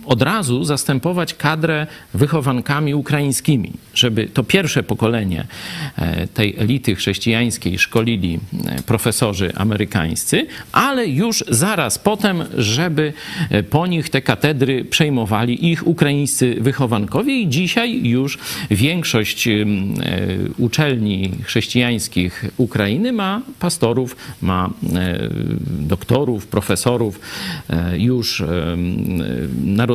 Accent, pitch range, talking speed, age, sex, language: native, 105-145 Hz, 85 wpm, 50-69, male, Polish